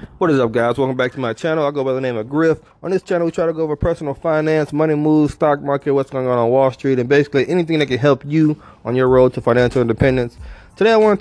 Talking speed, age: 285 wpm, 20-39